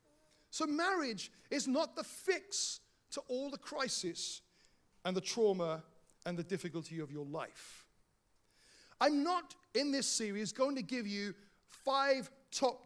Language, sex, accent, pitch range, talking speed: English, male, British, 180-260 Hz, 140 wpm